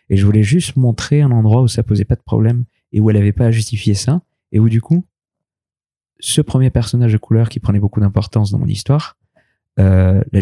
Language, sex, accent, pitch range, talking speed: French, male, French, 105-135 Hz, 230 wpm